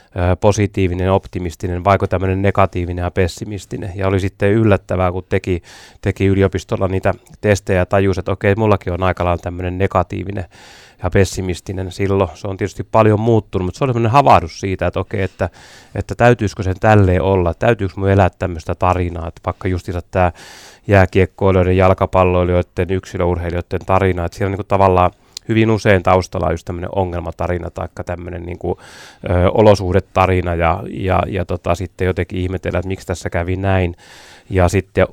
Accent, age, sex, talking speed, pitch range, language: native, 30-49, male, 165 wpm, 90-100 Hz, Finnish